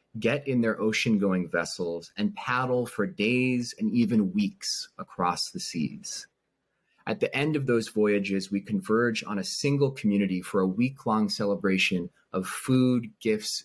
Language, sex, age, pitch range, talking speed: English, male, 30-49, 95-140 Hz, 150 wpm